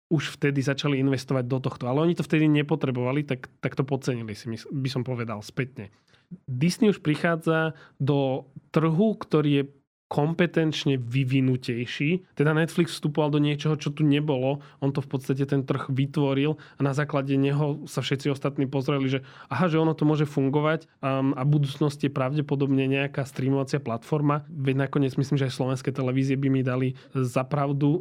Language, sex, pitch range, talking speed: Slovak, male, 135-150 Hz, 165 wpm